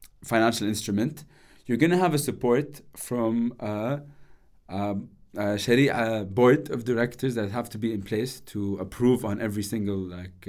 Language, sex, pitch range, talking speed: English, male, 105-145 Hz, 160 wpm